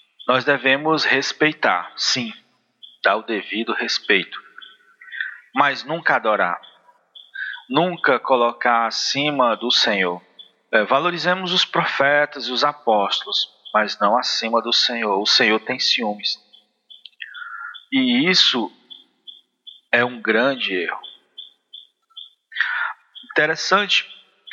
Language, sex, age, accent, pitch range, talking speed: Portuguese, male, 40-59, Brazilian, 135-185 Hz, 95 wpm